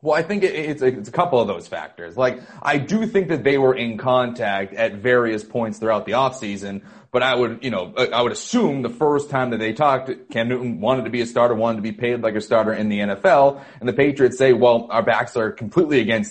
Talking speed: 240 wpm